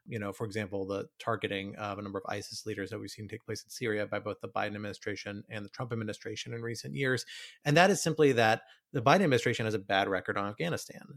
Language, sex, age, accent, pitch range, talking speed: English, male, 30-49, American, 105-125 Hz, 240 wpm